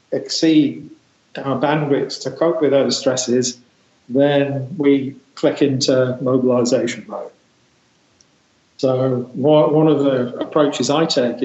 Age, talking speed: 40-59, 110 wpm